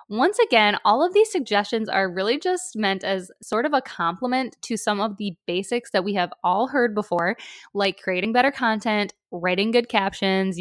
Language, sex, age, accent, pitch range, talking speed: English, female, 10-29, American, 185-225 Hz, 185 wpm